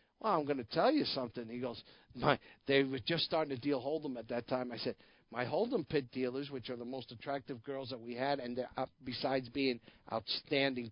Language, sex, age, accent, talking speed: English, male, 50-69, American, 220 wpm